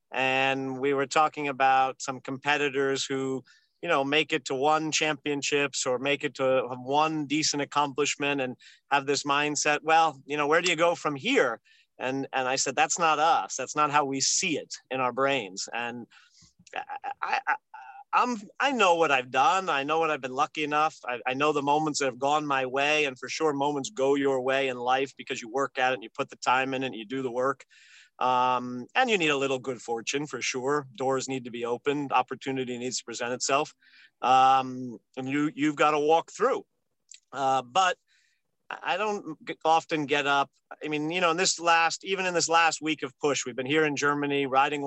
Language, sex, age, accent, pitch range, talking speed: English, male, 40-59, American, 130-150 Hz, 215 wpm